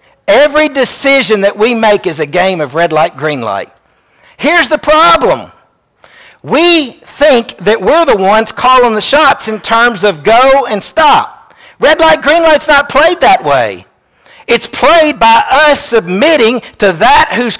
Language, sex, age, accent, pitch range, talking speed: English, male, 50-69, American, 215-300 Hz, 160 wpm